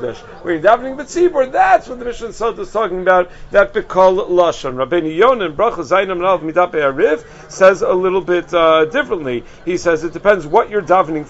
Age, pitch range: 50-69, 165-210 Hz